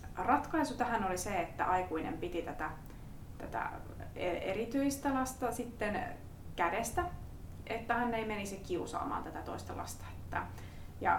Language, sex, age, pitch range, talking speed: Finnish, female, 20-39, 160-235 Hz, 120 wpm